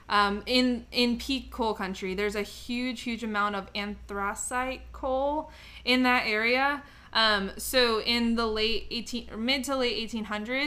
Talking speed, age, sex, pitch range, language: 145 wpm, 20-39, female, 205-235 Hz, English